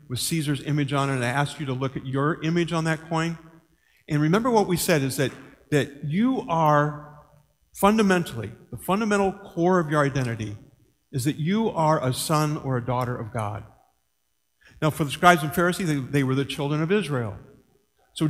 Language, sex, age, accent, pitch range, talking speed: English, male, 50-69, American, 130-165 Hz, 195 wpm